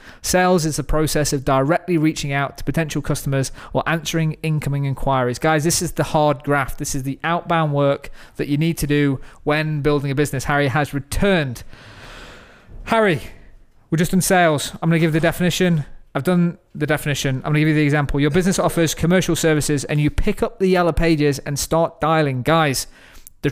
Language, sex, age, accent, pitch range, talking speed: English, male, 20-39, British, 140-165 Hz, 195 wpm